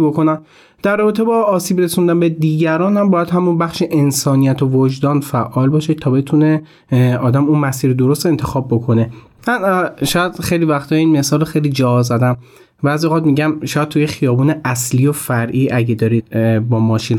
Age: 30-49